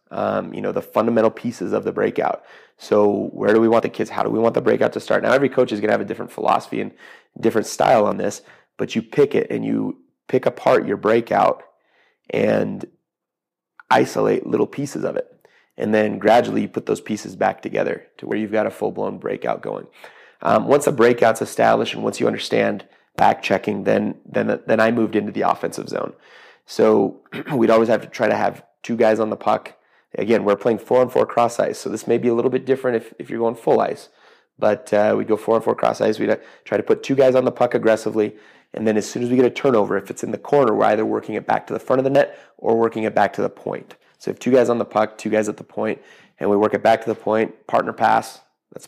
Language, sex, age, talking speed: English, male, 30-49, 245 wpm